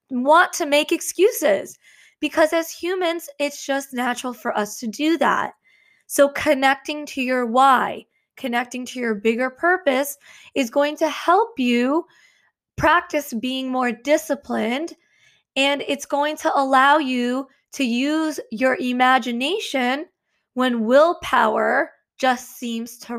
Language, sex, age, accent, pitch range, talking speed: English, female, 20-39, American, 250-295 Hz, 125 wpm